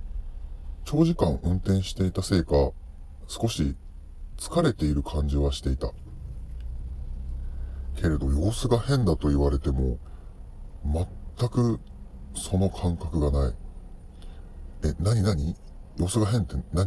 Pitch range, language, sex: 70-95 Hz, Japanese, female